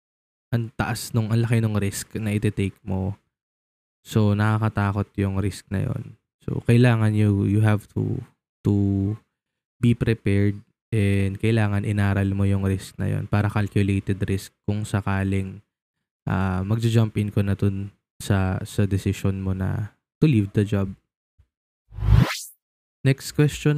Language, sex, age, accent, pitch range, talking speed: Filipino, male, 20-39, native, 100-120 Hz, 140 wpm